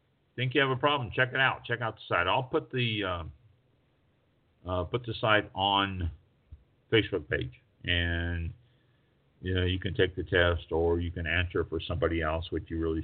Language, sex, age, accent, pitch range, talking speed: English, male, 50-69, American, 85-120 Hz, 190 wpm